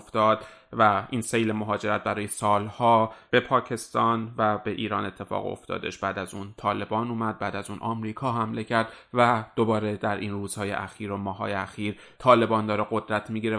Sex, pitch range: male, 105-115 Hz